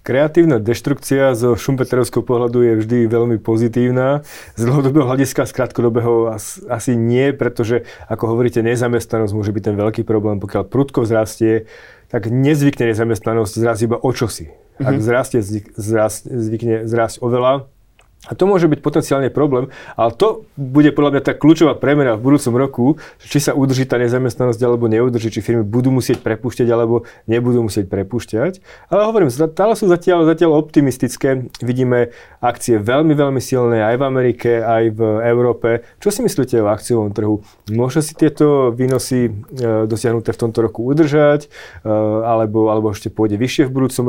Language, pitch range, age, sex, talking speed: Slovak, 115-135 Hz, 30-49, male, 155 wpm